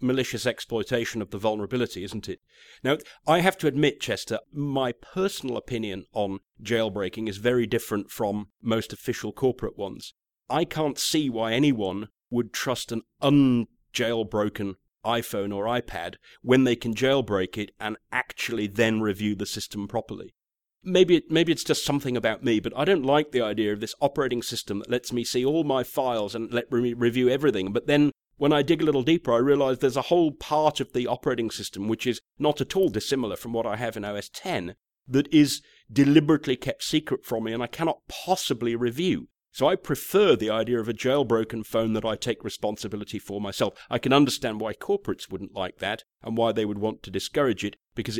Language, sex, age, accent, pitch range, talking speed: English, male, 40-59, British, 105-135 Hz, 195 wpm